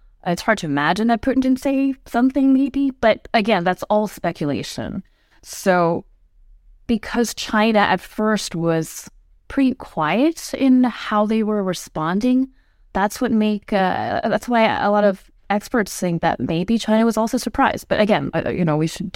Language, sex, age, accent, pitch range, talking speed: English, female, 20-39, American, 165-220 Hz, 160 wpm